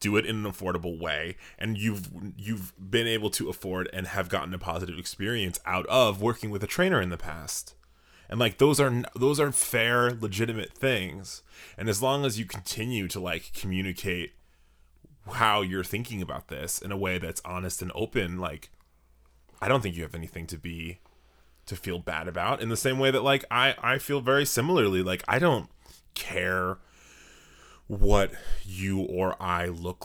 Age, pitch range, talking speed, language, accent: 20-39, 90-130 Hz, 180 wpm, English, American